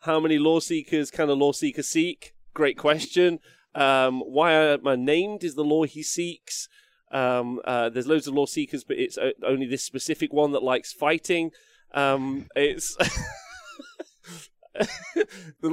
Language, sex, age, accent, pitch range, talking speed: English, male, 30-49, British, 135-225 Hz, 155 wpm